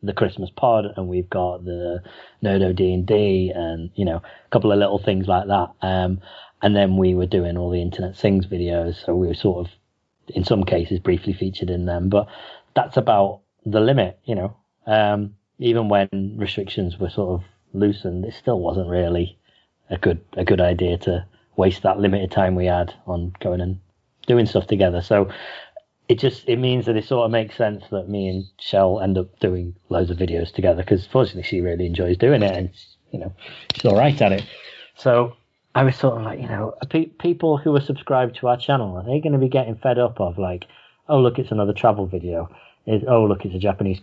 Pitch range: 90-115 Hz